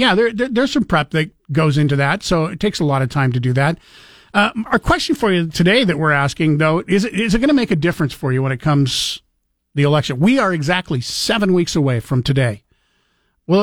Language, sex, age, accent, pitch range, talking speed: English, male, 50-69, American, 135-165 Hz, 240 wpm